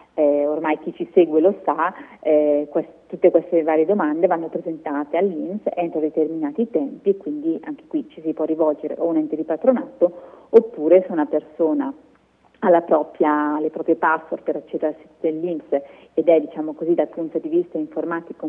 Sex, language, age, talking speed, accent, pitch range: female, Italian, 30-49, 175 wpm, native, 155-190 Hz